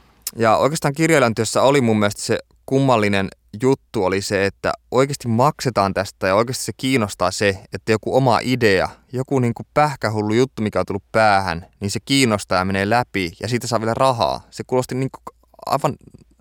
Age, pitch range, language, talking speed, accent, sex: 20-39, 95-115 Hz, Finnish, 180 wpm, native, male